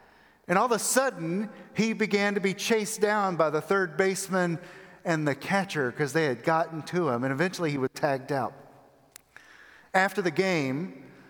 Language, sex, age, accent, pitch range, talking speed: English, male, 40-59, American, 150-205 Hz, 175 wpm